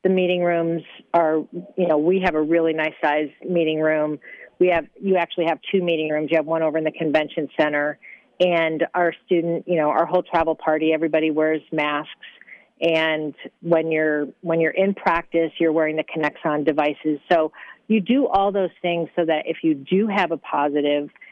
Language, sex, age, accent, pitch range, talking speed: English, female, 40-59, American, 155-175 Hz, 195 wpm